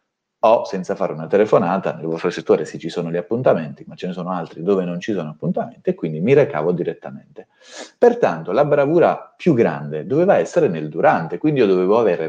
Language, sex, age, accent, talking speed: Italian, male, 30-49, native, 195 wpm